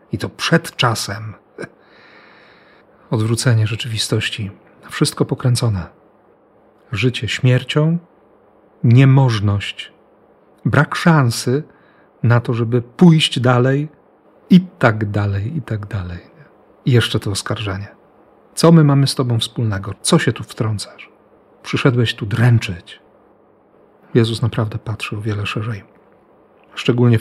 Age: 40-59